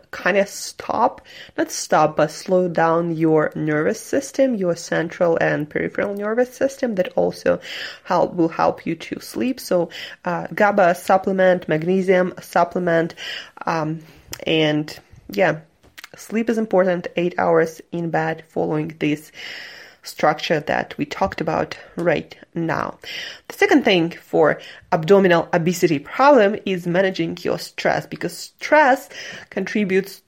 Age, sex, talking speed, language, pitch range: 20-39, female, 125 wpm, English, 165-210 Hz